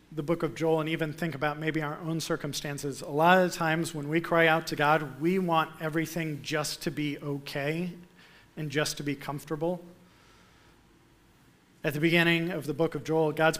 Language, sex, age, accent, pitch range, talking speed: English, male, 40-59, American, 145-165 Hz, 190 wpm